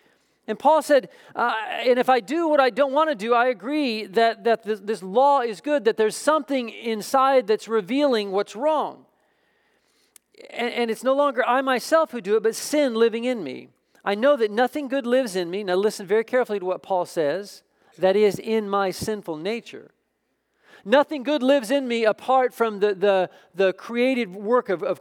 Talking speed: 195 wpm